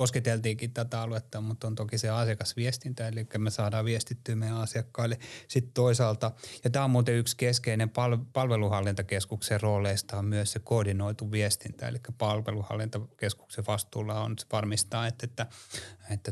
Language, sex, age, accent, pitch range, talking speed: Finnish, male, 30-49, native, 110-120 Hz, 135 wpm